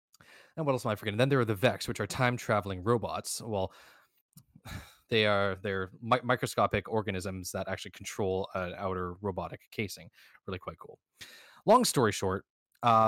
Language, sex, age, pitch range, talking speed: English, male, 20-39, 95-120 Hz, 165 wpm